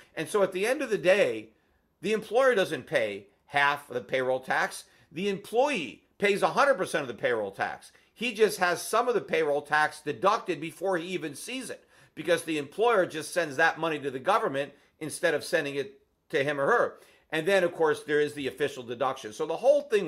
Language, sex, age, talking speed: English, male, 50-69, 210 wpm